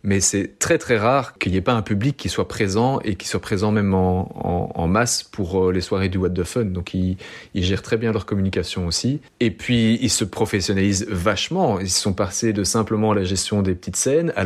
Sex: male